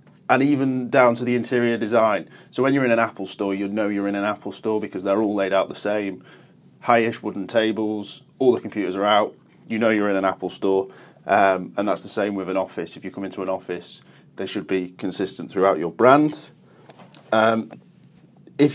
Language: English